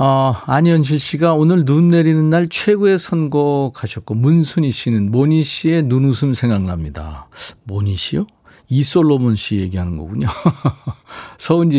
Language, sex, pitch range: Korean, male, 100-160 Hz